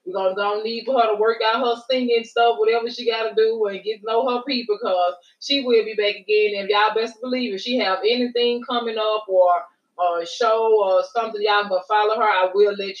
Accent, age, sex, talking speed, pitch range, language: American, 20-39, female, 240 wpm, 190-225 Hz, English